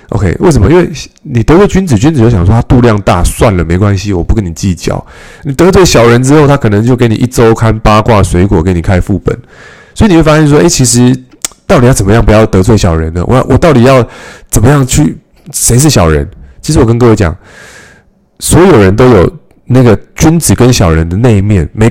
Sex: male